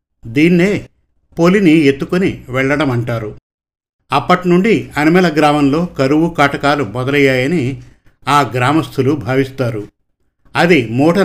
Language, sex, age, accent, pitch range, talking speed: Telugu, male, 50-69, native, 125-150 Hz, 85 wpm